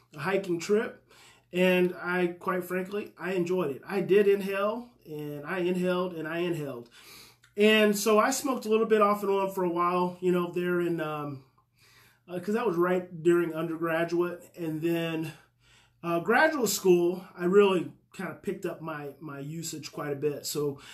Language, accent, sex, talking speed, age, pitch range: English, American, male, 180 wpm, 30-49, 155-190 Hz